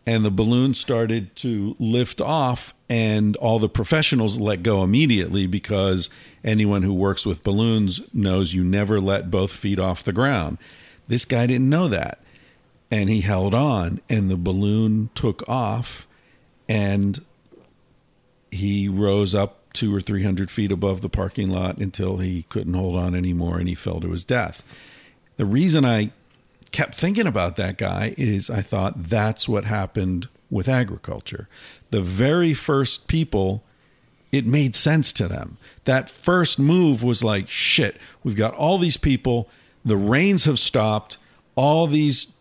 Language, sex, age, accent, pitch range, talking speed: English, male, 50-69, American, 100-130 Hz, 155 wpm